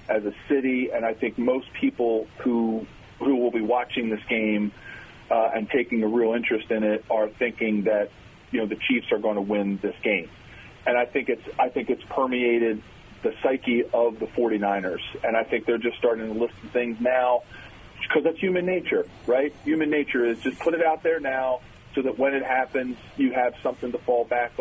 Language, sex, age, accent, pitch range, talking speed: English, male, 40-59, American, 110-130 Hz, 205 wpm